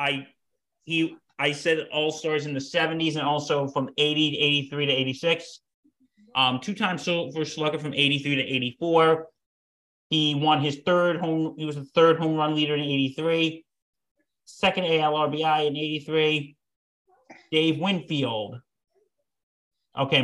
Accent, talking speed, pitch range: American, 140 wpm, 140-170 Hz